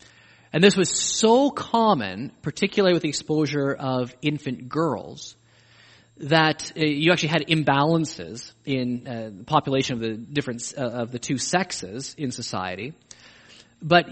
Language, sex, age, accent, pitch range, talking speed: English, male, 20-39, American, 145-215 Hz, 140 wpm